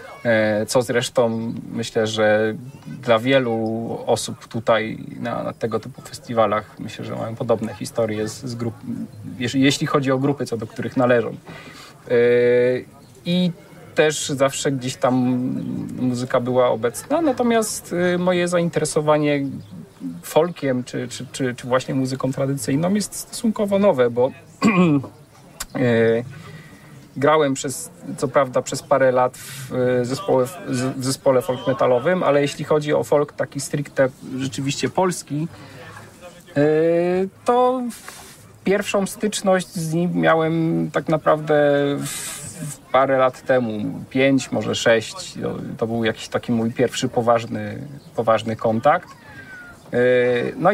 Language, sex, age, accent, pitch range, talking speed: Polish, male, 40-59, native, 120-155 Hz, 120 wpm